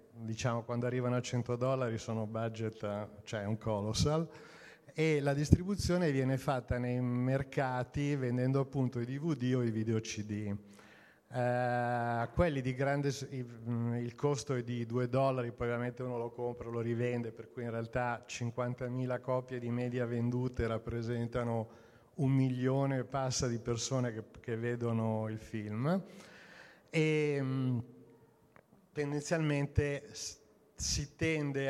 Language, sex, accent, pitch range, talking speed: Italian, male, native, 120-135 Hz, 130 wpm